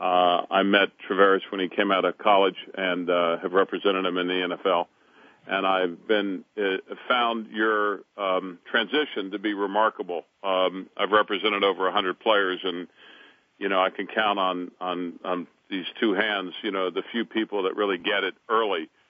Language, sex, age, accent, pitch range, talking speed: English, male, 50-69, American, 95-110 Hz, 180 wpm